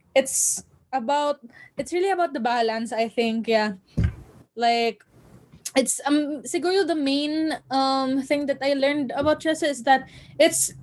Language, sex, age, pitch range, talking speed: Filipino, female, 10-29, 230-285 Hz, 145 wpm